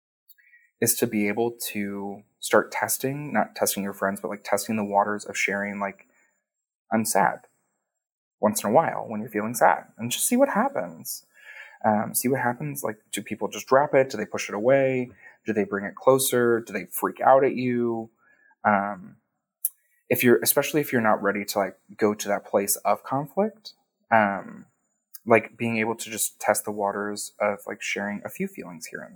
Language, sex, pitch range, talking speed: English, male, 105-150 Hz, 190 wpm